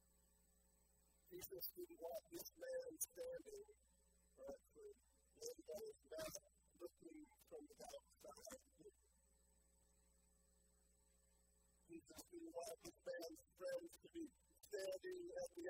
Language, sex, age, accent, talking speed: English, female, 40-59, American, 105 wpm